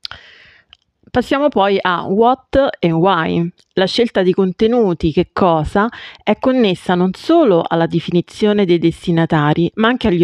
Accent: native